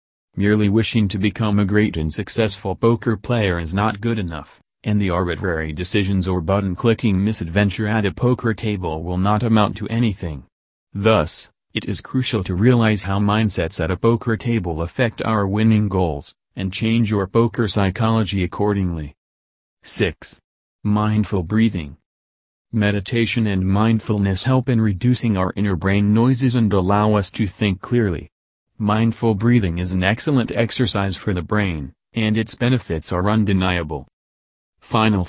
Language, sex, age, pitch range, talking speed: English, male, 40-59, 95-115 Hz, 145 wpm